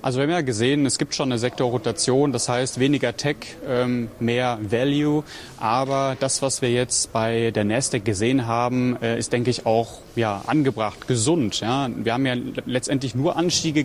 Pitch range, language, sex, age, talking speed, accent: 115-135 Hz, German, male, 30-49, 175 wpm, German